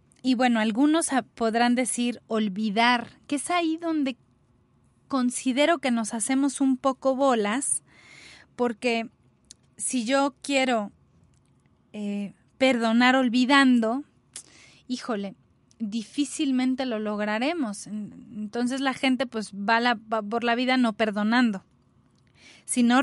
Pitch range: 225-280 Hz